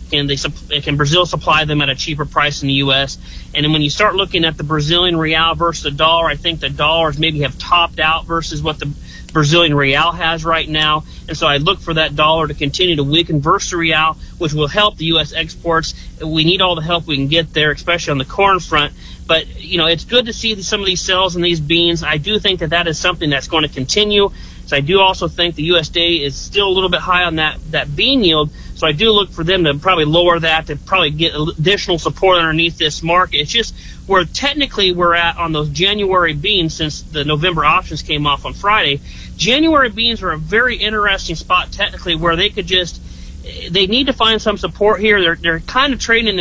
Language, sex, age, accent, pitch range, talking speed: English, male, 30-49, American, 155-185 Hz, 230 wpm